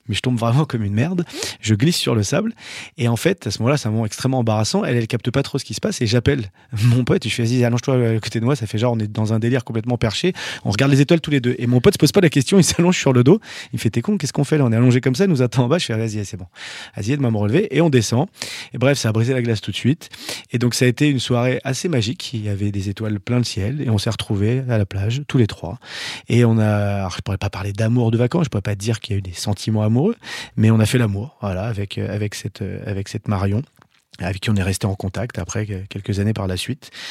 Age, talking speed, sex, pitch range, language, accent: 30-49, 310 wpm, male, 105-125 Hz, French, French